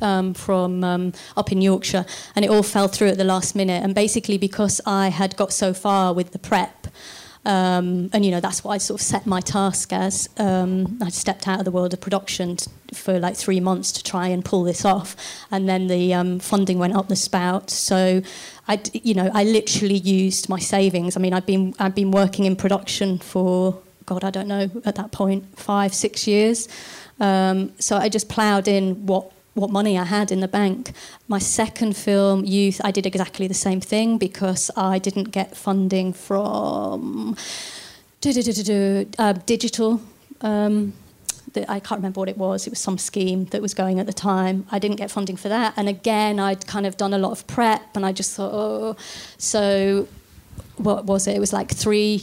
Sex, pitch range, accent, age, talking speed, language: female, 185-205 Hz, British, 30-49, 200 wpm, English